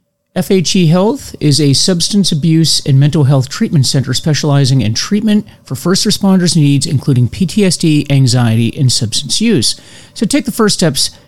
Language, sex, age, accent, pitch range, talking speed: English, male, 40-59, American, 120-155 Hz, 155 wpm